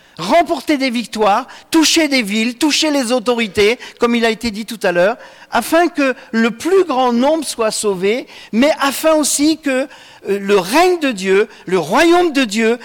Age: 50-69